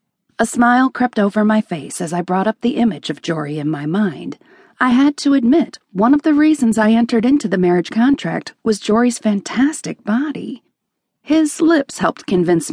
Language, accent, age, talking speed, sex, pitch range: English, American, 40-59, 185 wpm, female, 200-280 Hz